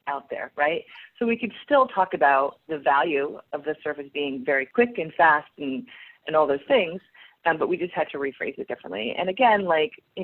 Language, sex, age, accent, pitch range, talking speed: English, female, 30-49, American, 150-225 Hz, 215 wpm